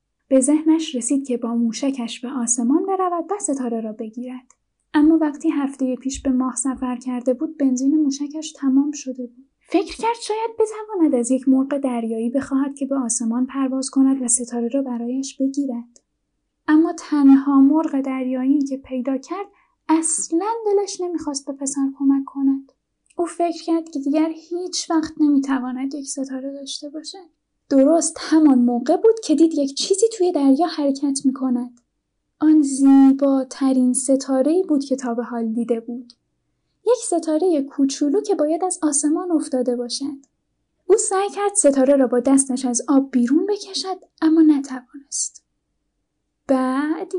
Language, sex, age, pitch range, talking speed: Persian, female, 10-29, 260-320 Hz, 150 wpm